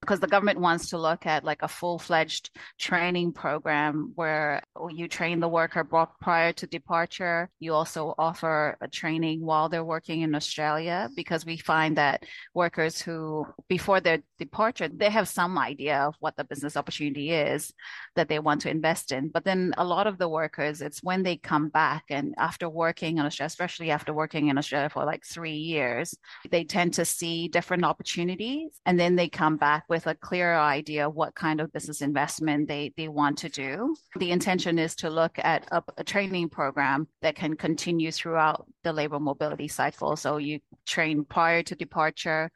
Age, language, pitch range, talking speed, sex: 30-49, English, 150-170 Hz, 185 wpm, female